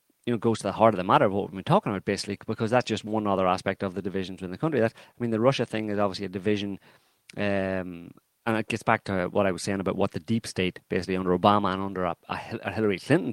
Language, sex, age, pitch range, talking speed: English, male, 30-49, 95-115 Hz, 280 wpm